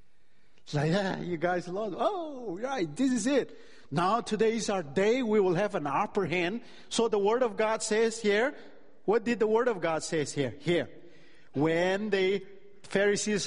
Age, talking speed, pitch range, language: 50-69, 185 wpm, 170-235 Hz, English